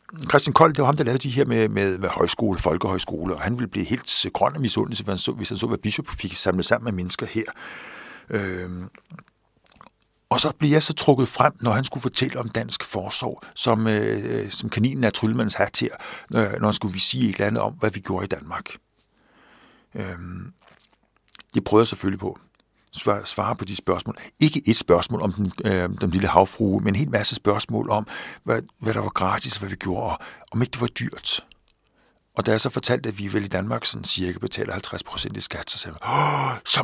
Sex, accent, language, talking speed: male, native, Danish, 215 wpm